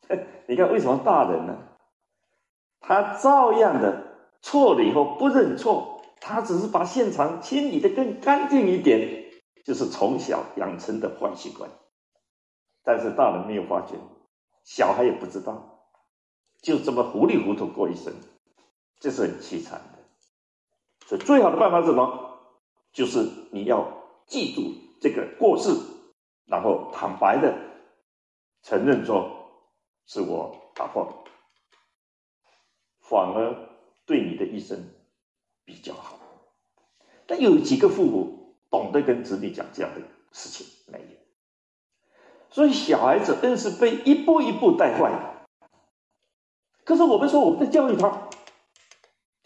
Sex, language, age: male, Chinese, 50-69